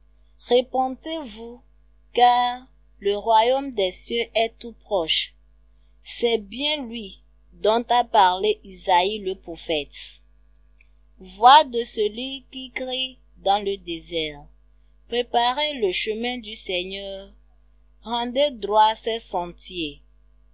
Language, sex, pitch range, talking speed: French, female, 180-240 Hz, 105 wpm